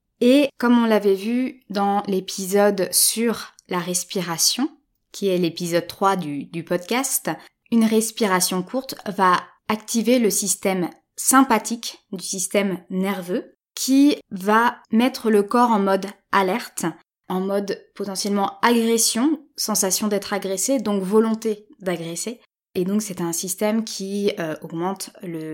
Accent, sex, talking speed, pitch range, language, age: French, female, 130 wpm, 185-230 Hz, French, 20-39